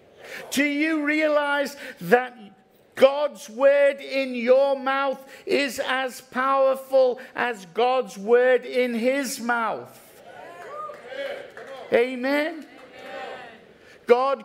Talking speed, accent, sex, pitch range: 85 wpm, British, male, 235-275 Hz